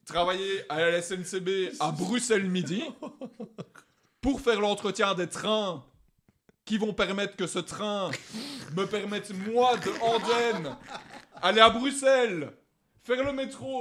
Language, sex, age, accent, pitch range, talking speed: French, male, 30-49, French, 205-265 Hz, 125 wpm